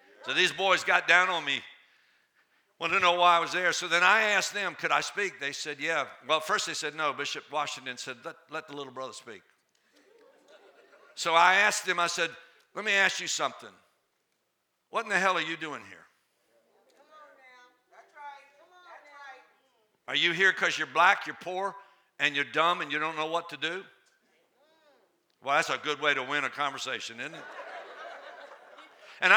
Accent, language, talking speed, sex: American, English, 180 wpm, male